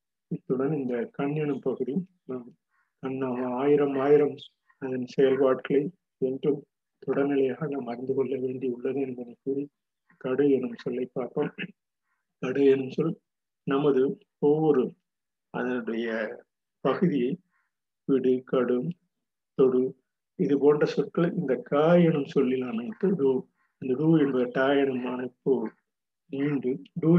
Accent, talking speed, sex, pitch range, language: native, 105 wpm, male, 130-155 Hz, Tamil